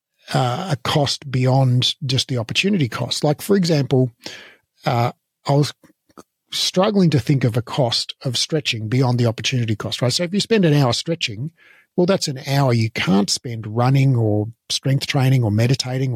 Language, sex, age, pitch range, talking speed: English, male, 50-69, 115-145 Hz, 175 wpm